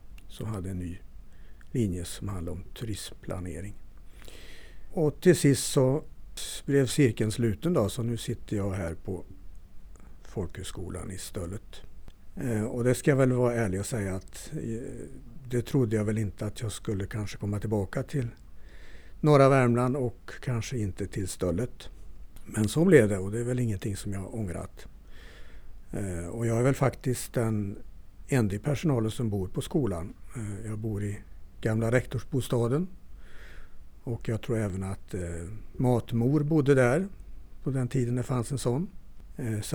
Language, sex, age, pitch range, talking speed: Swedish, male, 60-79, 95-130 Hz, 150 wpm